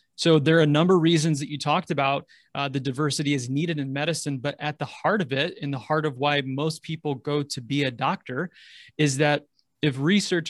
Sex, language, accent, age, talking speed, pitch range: male, English, American, 30-49, 230 wpm, 140-170 Hz